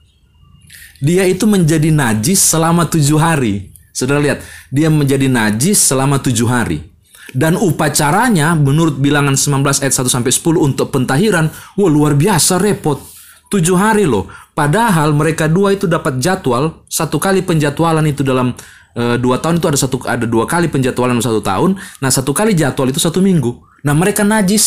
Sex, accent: male, native